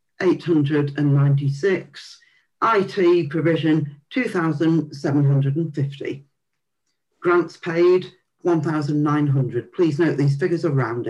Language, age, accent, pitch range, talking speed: English, 50-69, British, 140-185 Hz, 130 wpm